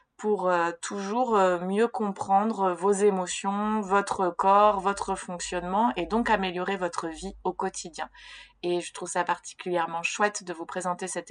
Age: 20-39